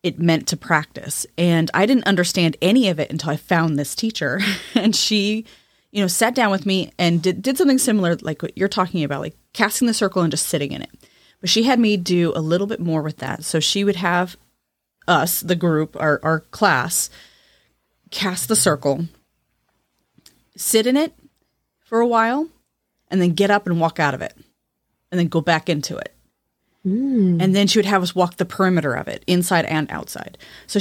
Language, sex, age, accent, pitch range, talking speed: English, female, 30-49, American, 160-200 Hz, 200 wpm